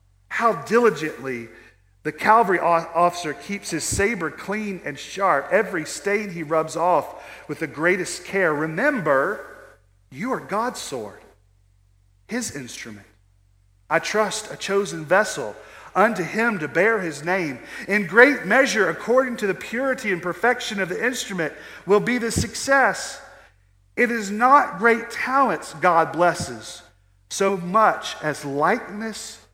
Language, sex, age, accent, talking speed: English, male, 40-59, American, 130 wpm